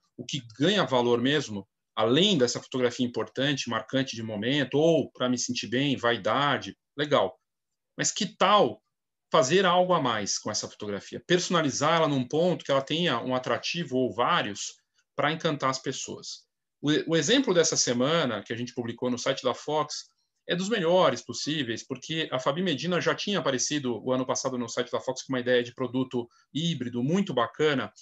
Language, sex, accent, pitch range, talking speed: Portuguese, male, Brazilian, 130-165 Hz, 175 wpm